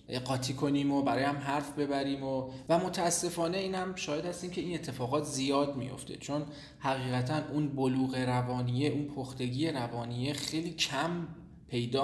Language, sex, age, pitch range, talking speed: Persian, male, 20-39, 125-160 Hz, 145 wpm